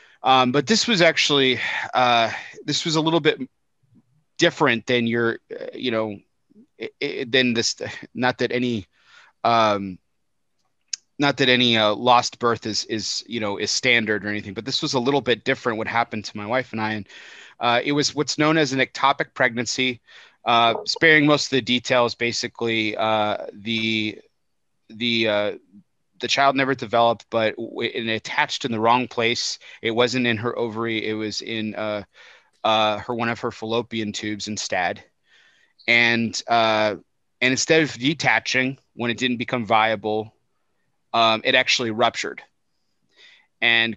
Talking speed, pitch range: 160 wpm, 110-130 Hz